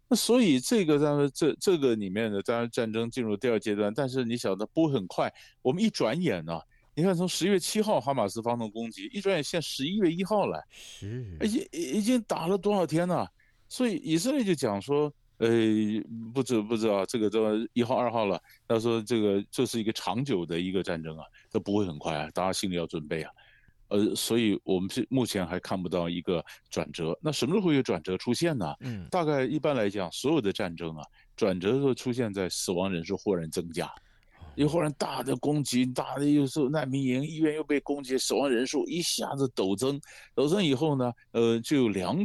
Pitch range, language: 100-150 Hz, Chinese